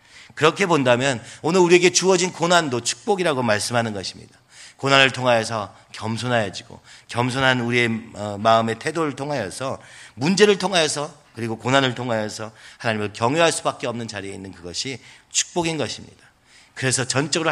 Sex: male